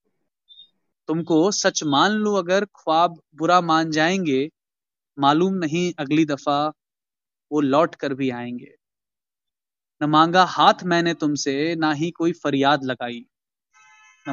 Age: 30-49